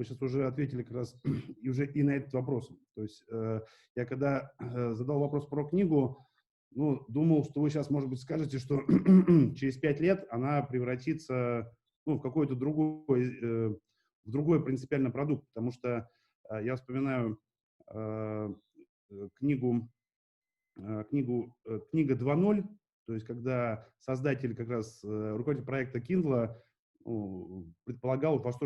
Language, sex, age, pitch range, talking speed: Russian, male, 30-49, 115-145 Hz, 130 wpm